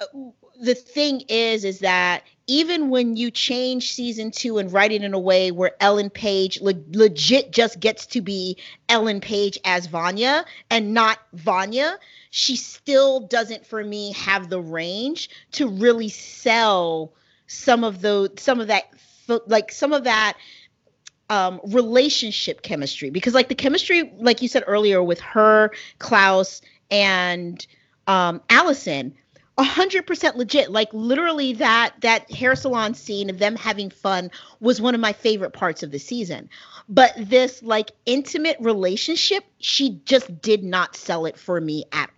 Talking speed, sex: 150 wpm, female